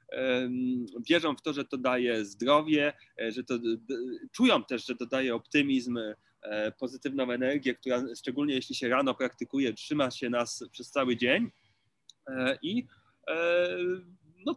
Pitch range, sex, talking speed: 120-150 Hz, male, 130 wpm